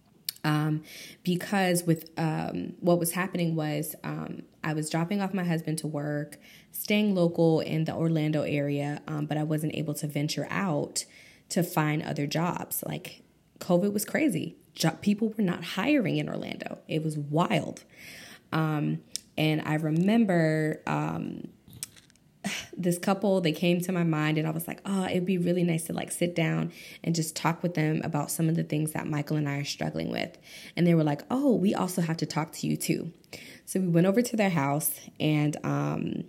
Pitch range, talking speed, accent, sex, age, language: 150-175 Hz, 185 wpm, American, female, 20-39, English